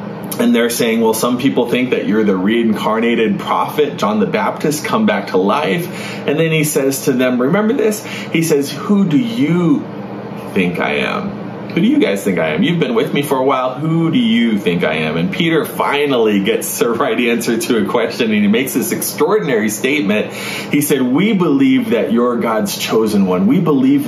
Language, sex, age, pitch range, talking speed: English, male, 30-49, 150-220 Hz, 205 wpm